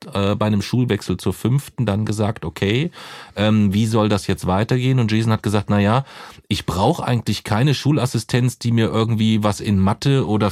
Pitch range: 100-125 Hz